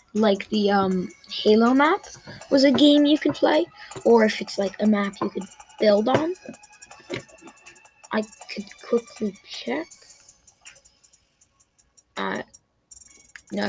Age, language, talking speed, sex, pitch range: 10-29, English, 120 wpm, female, 215-285 Hz